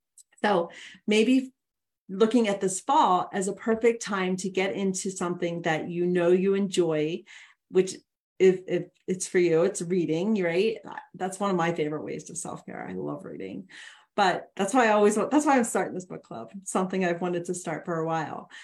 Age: 40-59